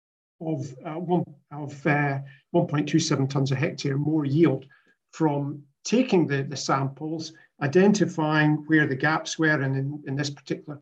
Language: English